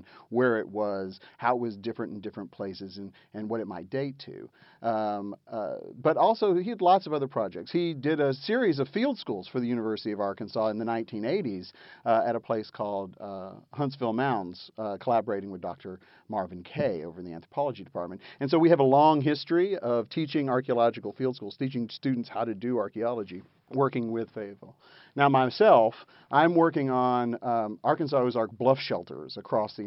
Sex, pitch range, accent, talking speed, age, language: male, 105-130 Hz, American, 185 wpm, 40-59, English